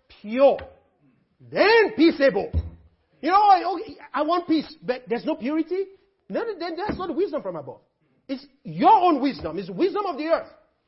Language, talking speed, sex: English, 175 wpm, male